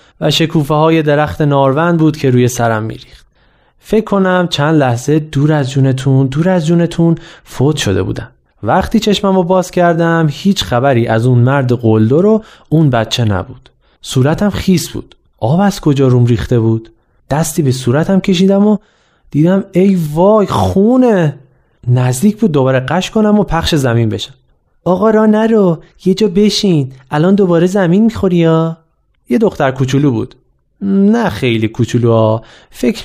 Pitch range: 125-185 Hz